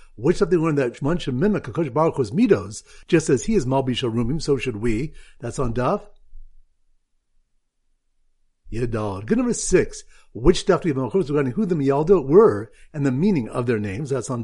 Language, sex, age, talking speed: English, male, 50-69, 145 wpm